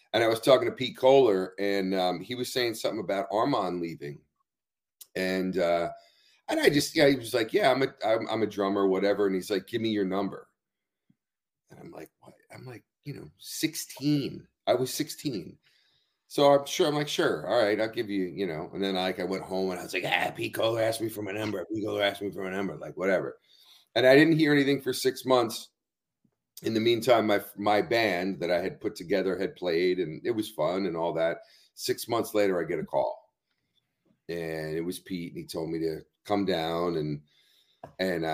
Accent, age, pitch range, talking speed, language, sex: American, 40-59, 90-125 Hz, 220 wpm, English, male